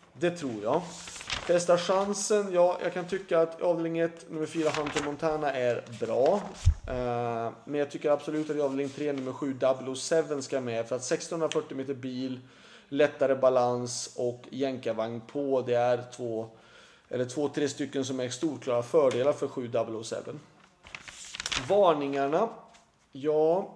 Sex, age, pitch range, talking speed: male, 30-49, 130-165 Hz, 140 wpm